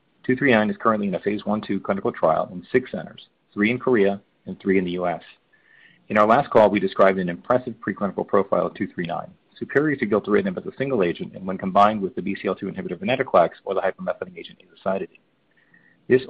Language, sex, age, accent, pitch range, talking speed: English, male, 40-59, American, 100-125 Hz, 195 wpm